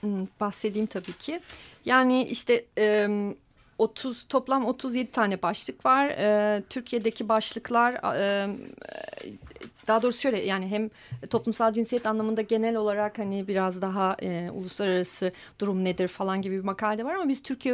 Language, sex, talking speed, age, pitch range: Turkish, female, 140 wpm, 40-59, 190-230 Hz